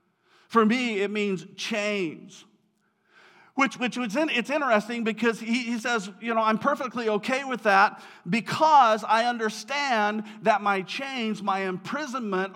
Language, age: English, 50-69